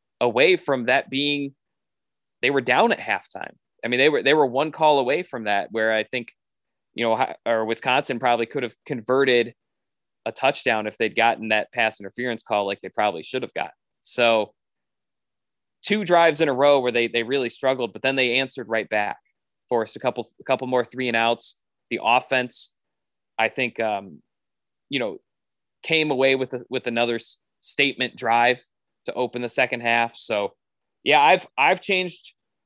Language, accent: English, American